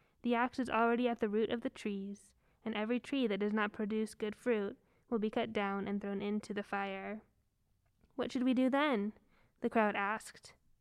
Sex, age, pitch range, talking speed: female, 10-29, 210-255 Hz, 200 wpm